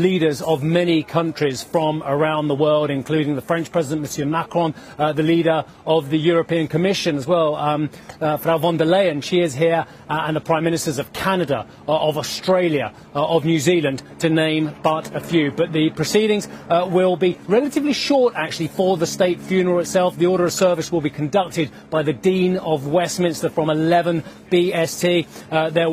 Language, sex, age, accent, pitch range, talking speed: English, male, 30-49, British, 150-175 Hz, 190 wpm